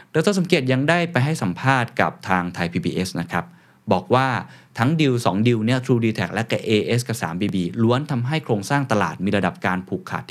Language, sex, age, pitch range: Thai, male, 20-39, 95-135 Hz